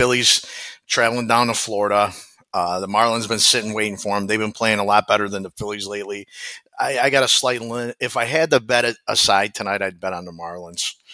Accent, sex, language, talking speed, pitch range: American, male, English, 230 wpm, 95-110 Hz